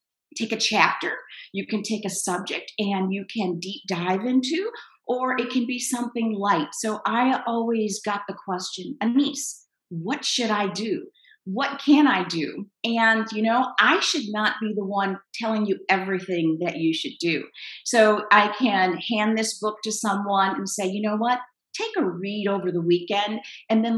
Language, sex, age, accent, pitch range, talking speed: English, female, 50-69, American, 190-230 Hz, 180 wpm